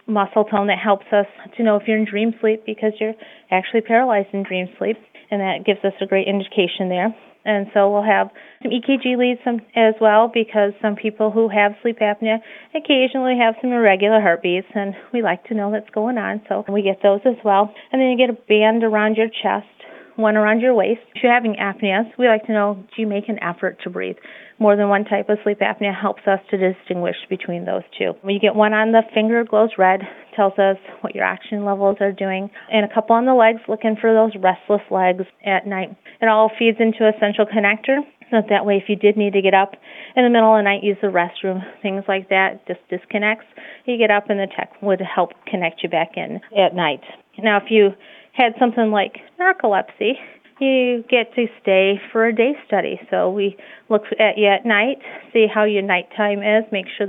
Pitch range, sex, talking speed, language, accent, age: 200-225 Hz, female, 220 wpm, English, American, 30-49